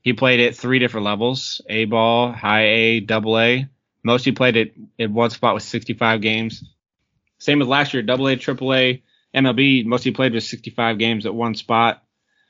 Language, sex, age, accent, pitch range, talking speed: English, male, 20-39, American, 110-145 Hz, 180 wpm